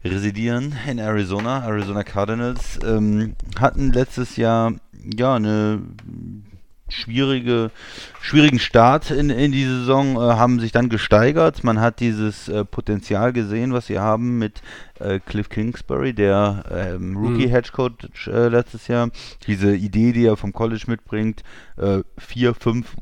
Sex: male